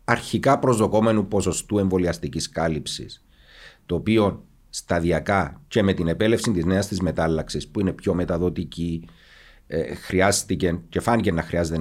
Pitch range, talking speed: 85-110 Hz, 125 wpm